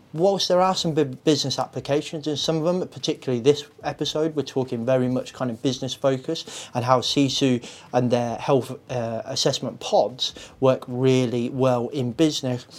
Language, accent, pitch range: English, British, 120-145 Hz